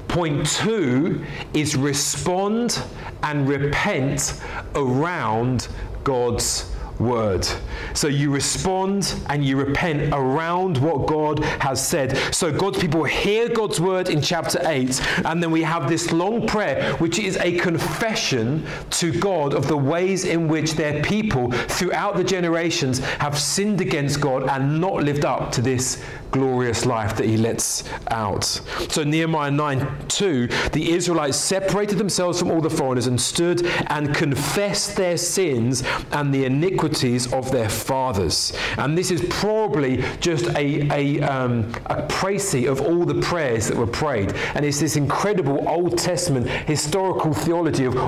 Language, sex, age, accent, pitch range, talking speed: English, male, 40-59, British, 135-175 Hz, 145 wpm